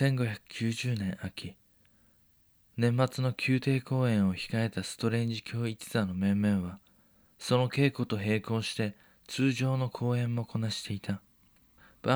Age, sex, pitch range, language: 20-39, male, 100-125 Hz, Japanese